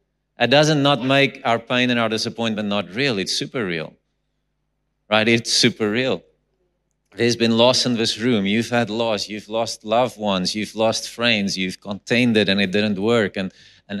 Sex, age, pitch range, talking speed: male, 30-49, 105-120 Hz, 185 wpm